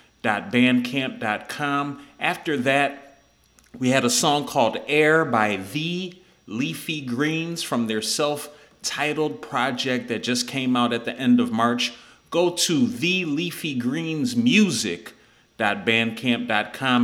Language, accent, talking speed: English, American, 115 wpm